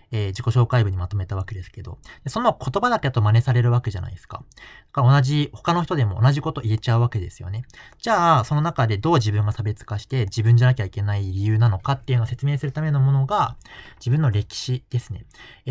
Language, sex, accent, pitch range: Japanese, male, native, 110-135 Hz